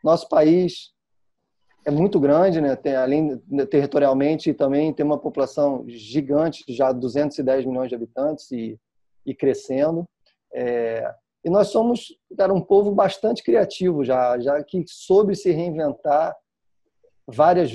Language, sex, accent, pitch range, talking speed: Portuguese, male, Brazilian, 140-180 Hz, 125 wpm